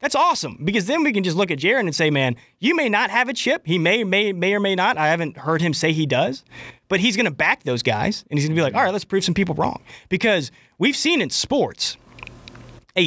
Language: English